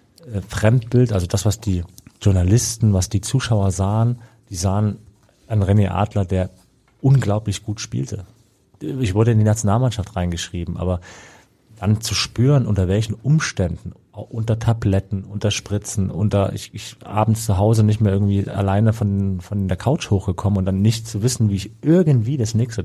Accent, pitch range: German, 95-115 Hz